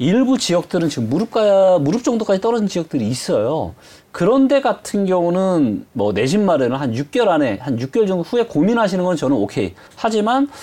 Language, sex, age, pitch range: Korean, male, 30-49, 150-230 Hz